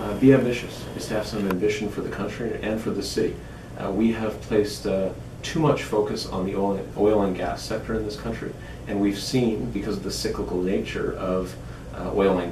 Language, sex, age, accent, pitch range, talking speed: English, male, 40-59, American, 95-110 Hz, 210 wpm